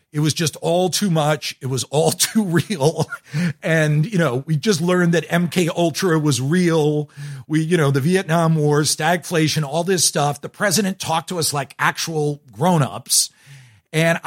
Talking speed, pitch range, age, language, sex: 175 wpm, 140-175 Hz, 50-69, English, male